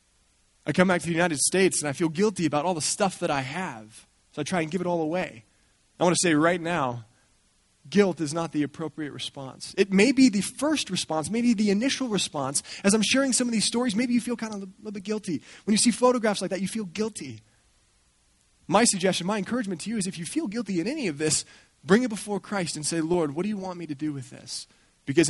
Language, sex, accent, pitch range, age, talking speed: English, male, American, 145-200 Hz, 20-39, 250 wpm